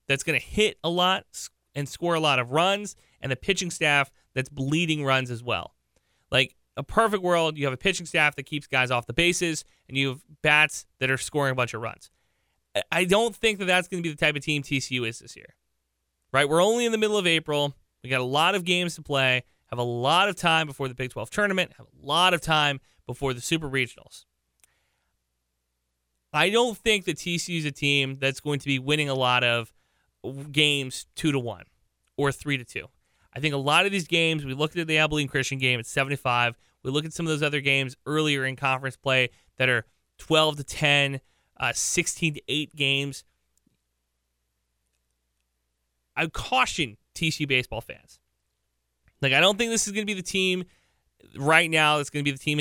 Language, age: English, 30-49